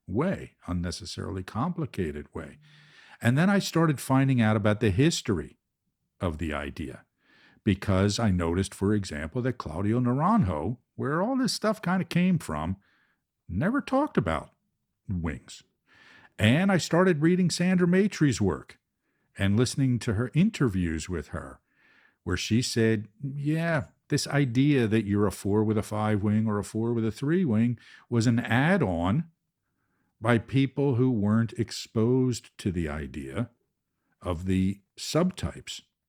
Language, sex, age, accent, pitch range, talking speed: English, male, 50-69, American, 95-140 Hz, 140 wpm